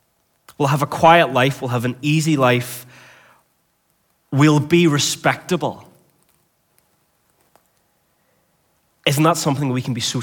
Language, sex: English, male